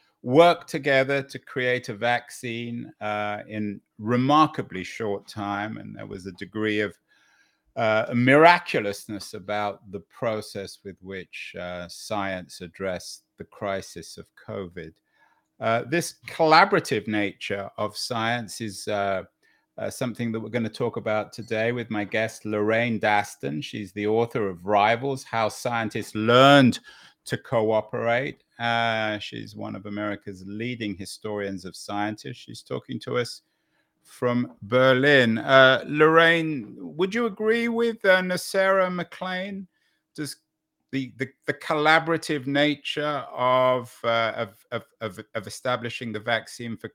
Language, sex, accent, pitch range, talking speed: English, male, British, 105-135 Hz, 130 wpm